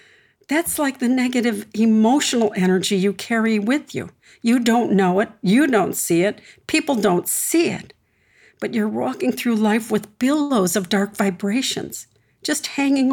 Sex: female